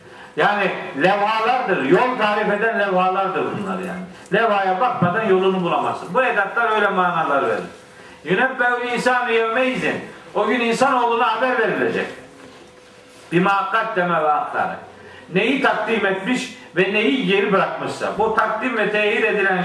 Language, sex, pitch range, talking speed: Turkish, male, 190-240 Hz, 120 wpm